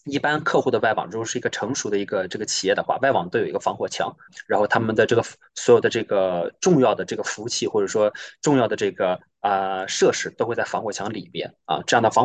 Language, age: Chinese, 20-39